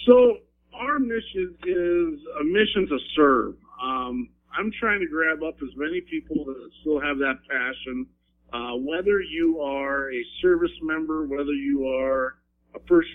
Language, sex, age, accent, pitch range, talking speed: English, male, 50-69, American, 130-185 Hz, 155 wpm